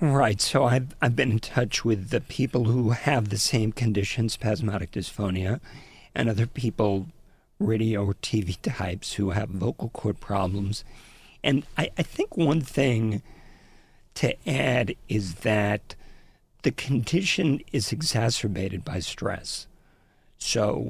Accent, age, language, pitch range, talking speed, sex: American, 50-69, English, 100-125 Hz, 130 wpm, male